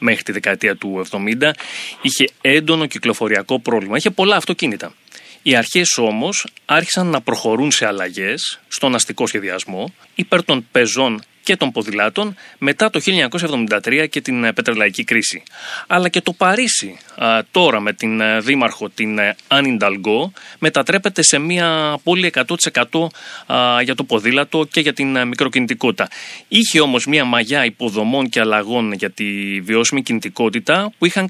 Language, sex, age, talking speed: Greek, male, 30-49, 135 wpm